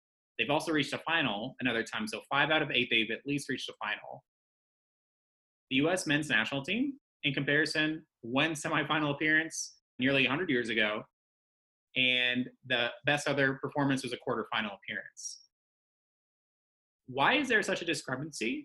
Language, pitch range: English, 120-155 Hz